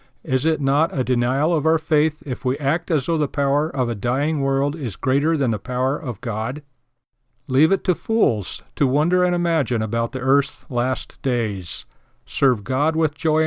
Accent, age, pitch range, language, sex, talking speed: American, 50-69, 125-160 Hz, English, male, 190 wpm